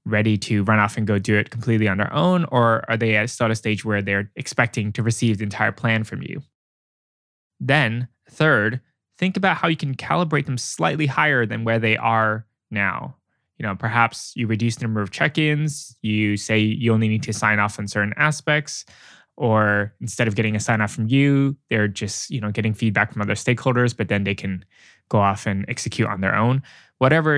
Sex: male